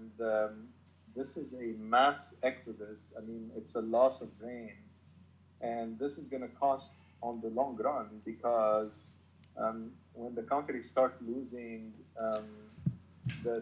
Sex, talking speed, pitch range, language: male, 145 wpm, 110-125 Hz, English